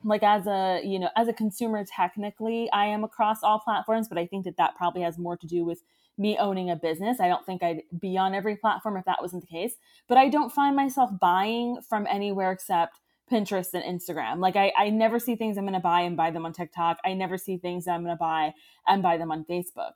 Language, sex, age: English, female, 20-39